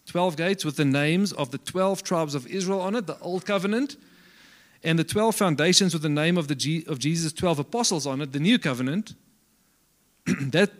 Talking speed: 200 wpm